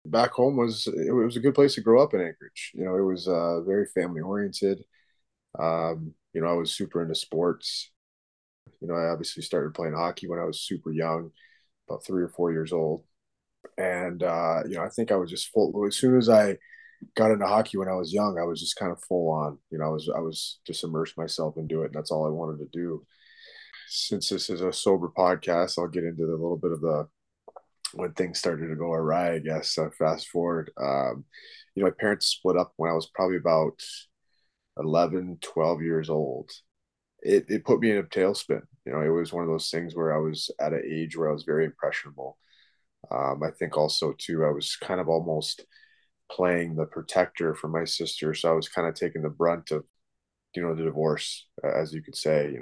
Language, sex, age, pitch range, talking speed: English, male, 20-39, 80-95 Hz, 220 wpm